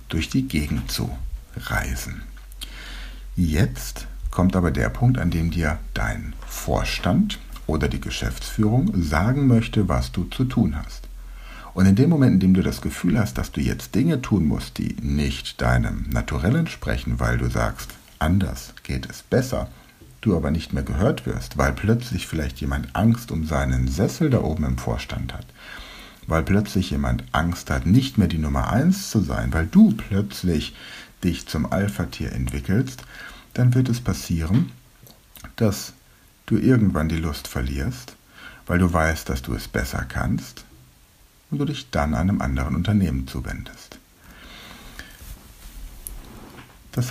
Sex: male